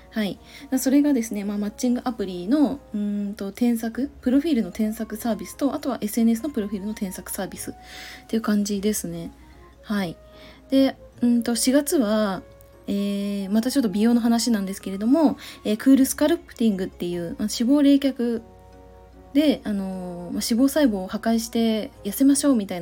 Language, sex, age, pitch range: Japanese, female, 20-39, 195-255 Hz